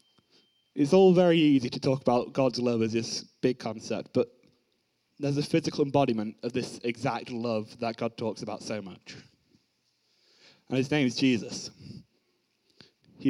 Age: 20-39